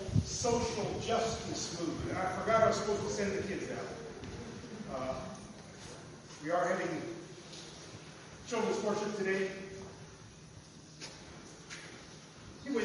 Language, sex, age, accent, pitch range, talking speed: English, male, 40-59, American, 200-245 Hz, 100 wpm